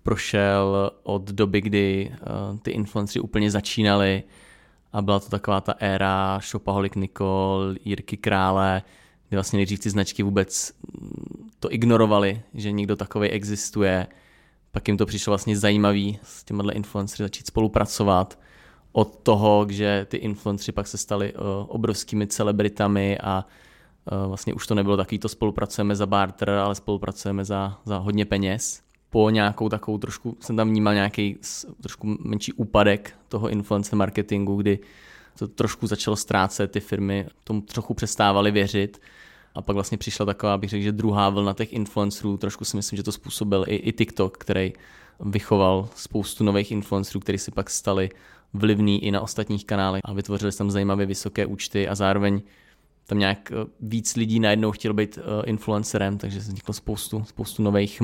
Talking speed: 155 wpm